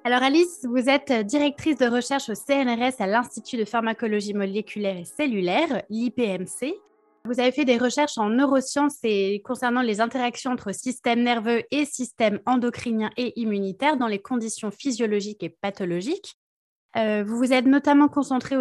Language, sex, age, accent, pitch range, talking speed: French, female, 20-39, French, 215-270 Hz, 155 wpm